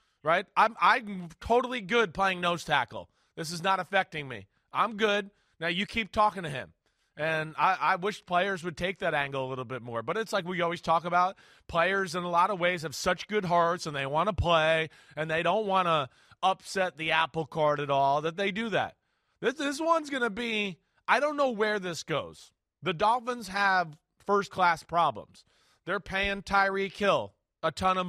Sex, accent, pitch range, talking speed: male, American, 165-200 Hz, 205 wpm